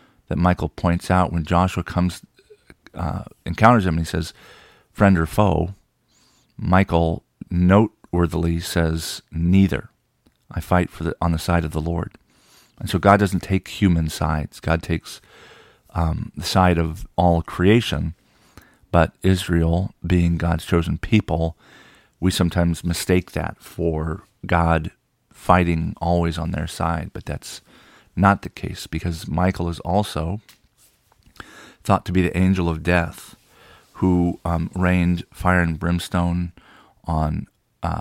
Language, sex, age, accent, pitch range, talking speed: English, male, 40-59, American, 85-95 Hz, 135 wpm